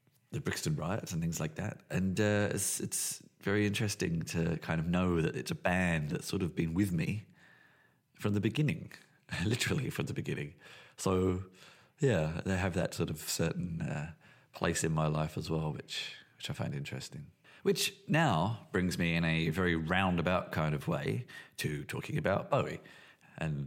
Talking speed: 175 wpm